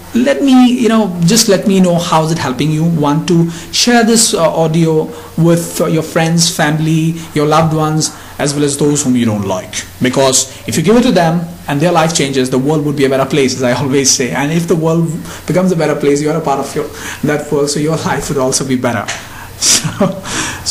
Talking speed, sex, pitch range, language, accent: 230 wpm, male, 145-175 Hz, English, Indian